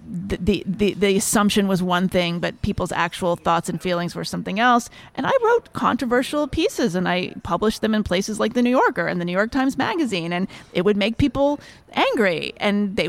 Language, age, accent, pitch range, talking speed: English, 30-49, American, 190-260 Hz, 205 wpm